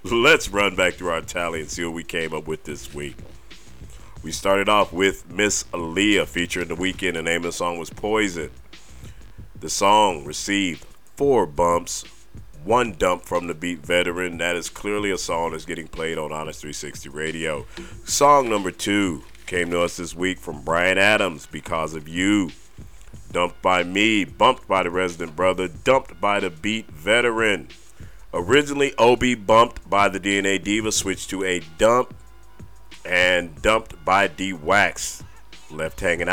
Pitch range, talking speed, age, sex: 85-100 Hz, 165 wpm, 40-59, male